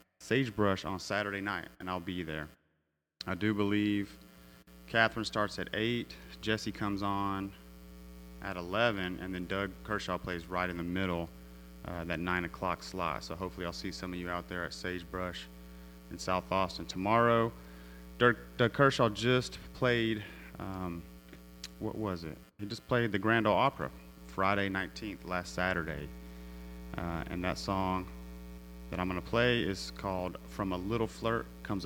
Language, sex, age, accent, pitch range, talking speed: English, male, 30-49, American, 75-105 Hz, 160 wpm